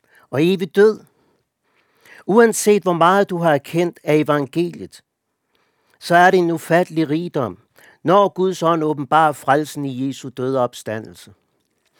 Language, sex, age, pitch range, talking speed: Danish, male, 60-79, 125-170 Hz, 130 wpm